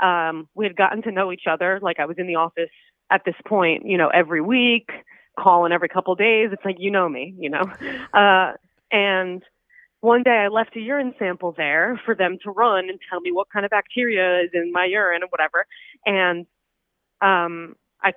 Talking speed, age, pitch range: 210 wpm, 30-49, 185-260 Hz